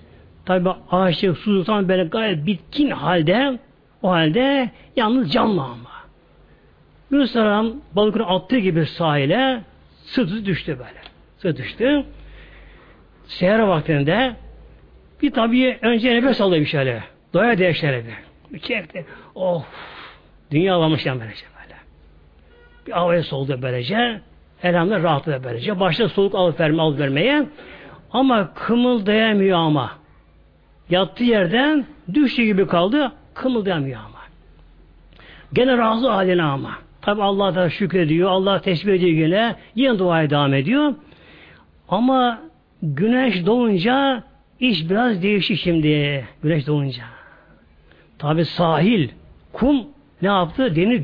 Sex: male